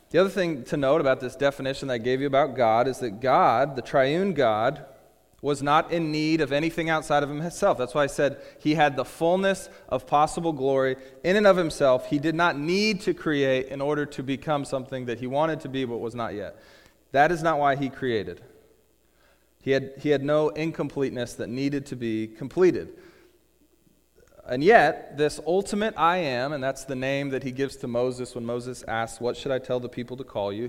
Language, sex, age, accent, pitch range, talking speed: English, male, 30-49, American, 125-165 Hz, 215 wpm